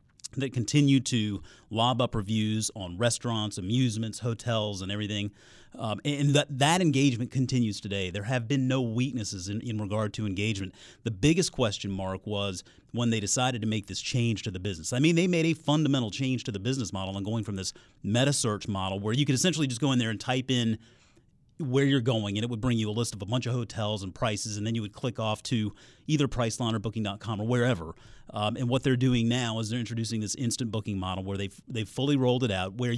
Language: English